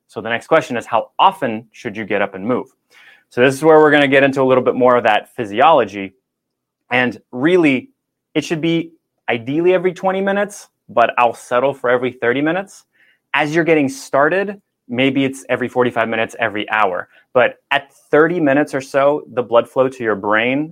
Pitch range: 110-145 Hz